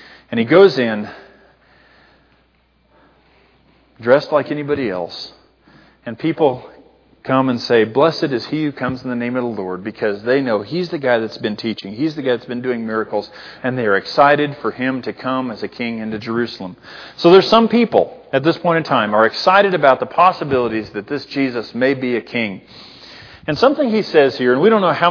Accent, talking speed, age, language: American, 200 wpm, 40-59, English